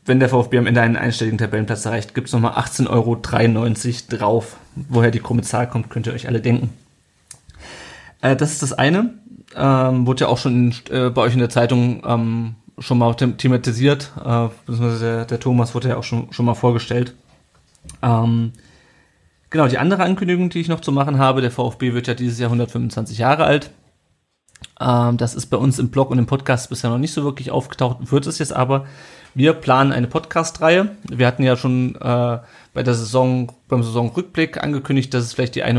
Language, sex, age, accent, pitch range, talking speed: German, male, 30-49, German, 120-140 Hz, 195 wpm